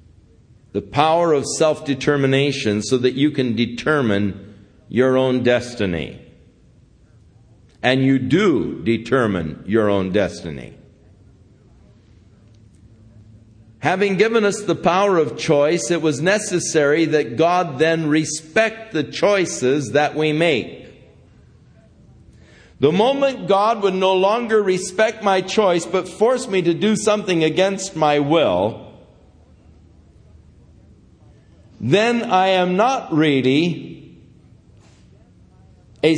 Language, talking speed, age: English, 105 wpm, 60-79